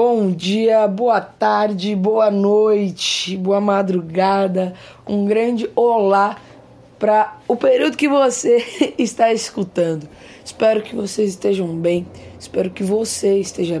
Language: Portuguese